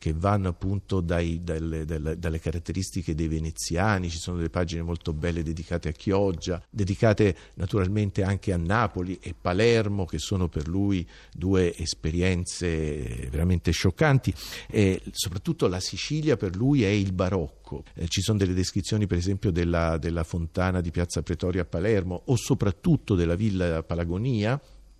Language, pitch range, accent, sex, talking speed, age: Italian, 80-95 Hz, native, male, 140 wpm, 50-69